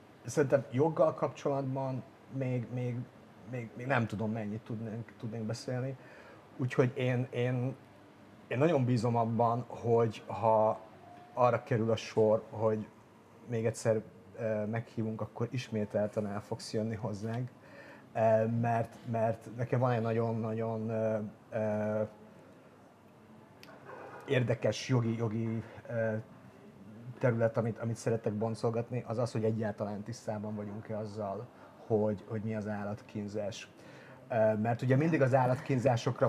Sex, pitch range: male, 110-125 Hz